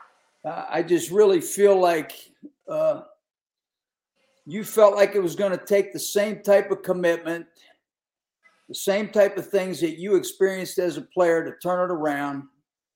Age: 50-69